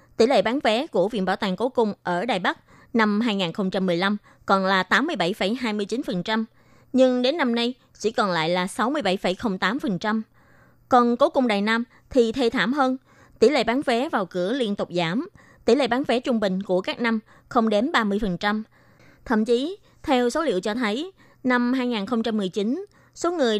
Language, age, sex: Vietnamese, 20-39, female